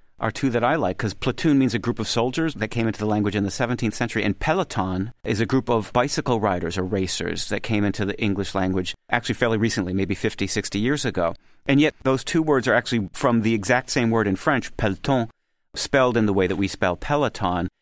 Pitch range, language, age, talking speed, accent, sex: 100-125 Hz, English, 40-59, 230 wpm, American, male